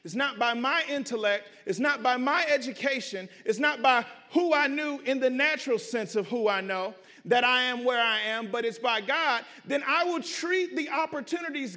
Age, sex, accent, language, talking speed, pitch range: 40-59, male, American, English, 205 wpm, 265-340 Hz